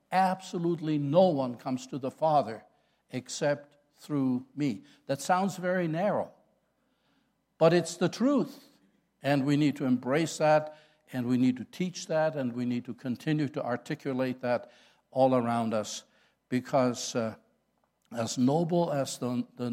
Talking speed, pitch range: 145 wpm, 135-190 Hz